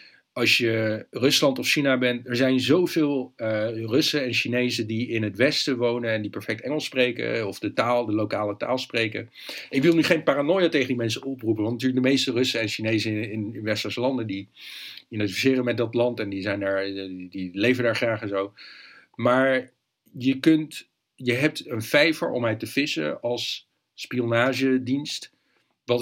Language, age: Dutch, 50-69